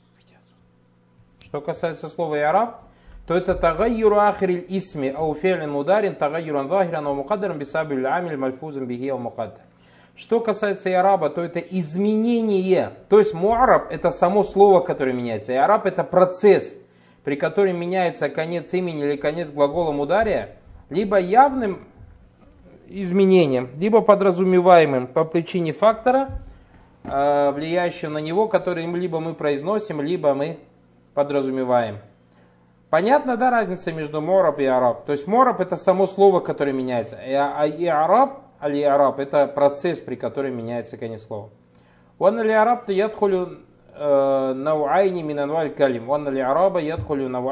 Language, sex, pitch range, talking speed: Russian, male, 130-185 Hz, 125 wpm